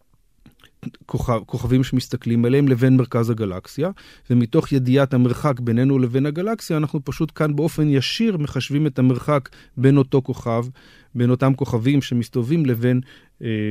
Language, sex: Hebrew, male